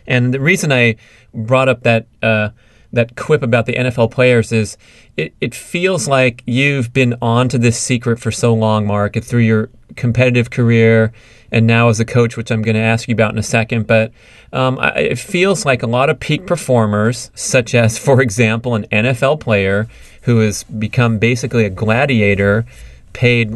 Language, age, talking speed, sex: English, 30-49, 185 wpm, male